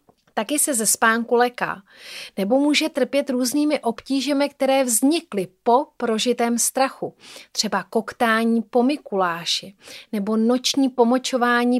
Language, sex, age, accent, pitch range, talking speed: Czech, female, 30-49, native, 215-270 Hz, 110 wpm